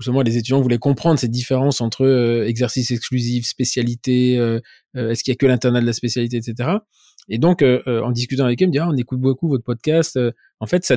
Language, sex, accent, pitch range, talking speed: French, male, French, 115-140 Hz, 225 wpm